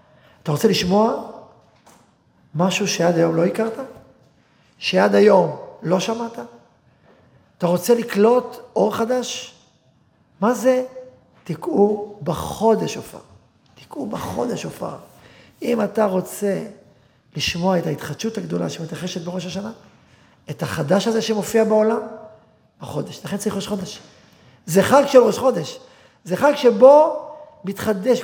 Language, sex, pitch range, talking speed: Hebrew, male, 180-240 Hz, 115 wpm